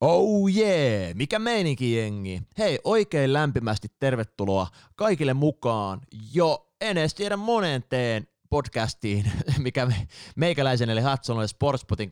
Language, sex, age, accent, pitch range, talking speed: Finnish, male, 30-49, native, 105-145 Hz, 120 wpm